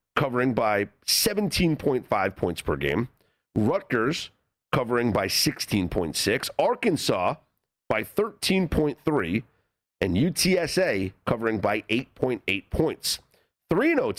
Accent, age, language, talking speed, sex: American, 40-59, English, 85 wpm, male